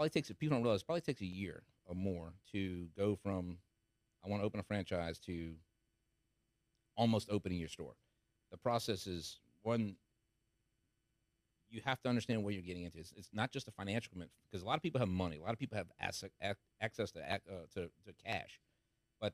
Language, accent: English, American